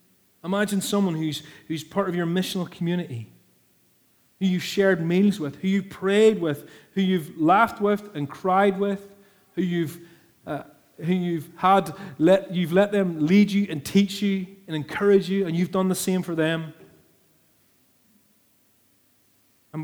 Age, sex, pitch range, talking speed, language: 30-49, male, 160-205 Hz, 155 wpm, English